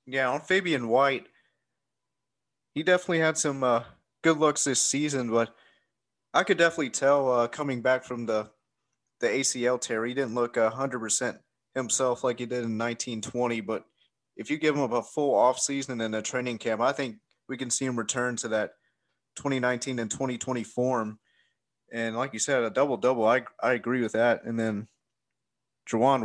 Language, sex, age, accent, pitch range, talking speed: English, male, 20-39, American, 115-130 Hz, 185 wpm